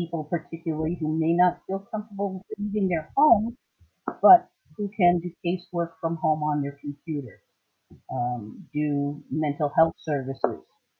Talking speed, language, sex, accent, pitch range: 135 wpm, English, female, American, 145-180 Hz